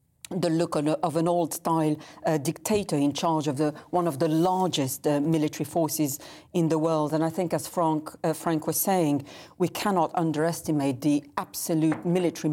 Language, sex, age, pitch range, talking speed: English, female, 50-69, 150-175 Hz, 160 wpm